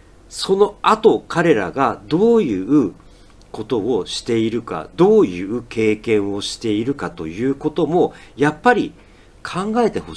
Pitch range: 100-160 Hz